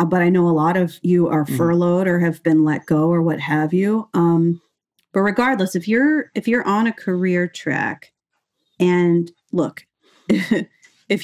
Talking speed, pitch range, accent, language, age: 170 wpm, 165-205 Hz, American, English, 30-49